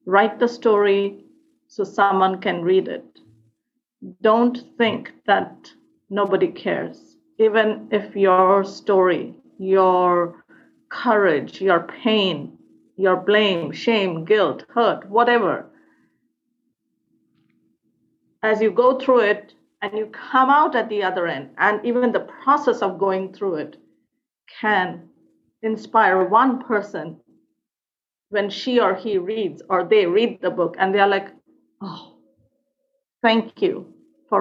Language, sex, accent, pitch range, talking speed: English, female, Indian, 190-240 Hz, 120 wpm